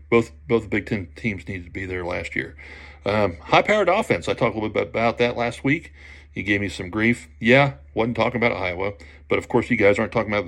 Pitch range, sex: 75-115 Hz, male